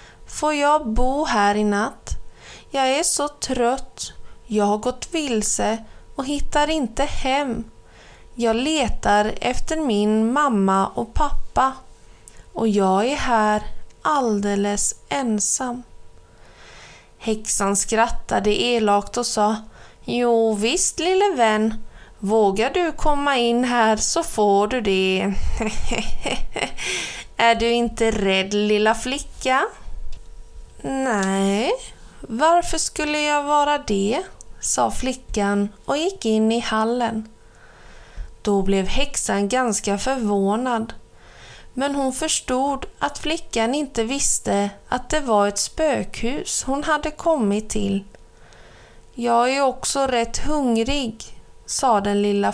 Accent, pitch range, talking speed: native, 210-275 Hz, 110 wpm